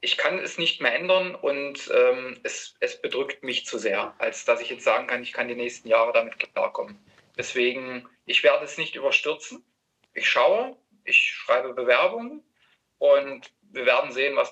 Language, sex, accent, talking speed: German, male, German, 180 wpm